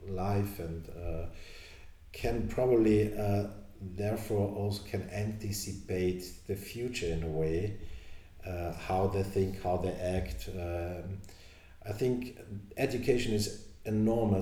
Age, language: 50-69, English